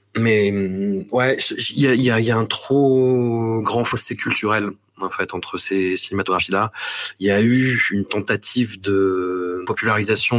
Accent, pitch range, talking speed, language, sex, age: French, 95-125 Hz, 155 wpm, French, male, 30-49